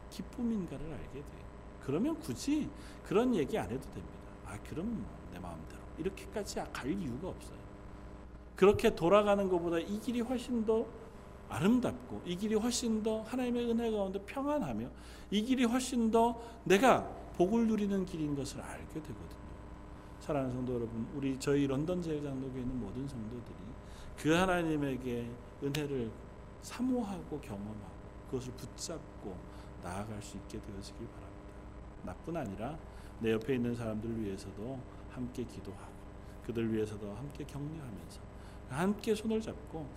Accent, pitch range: native, 100-160 Hz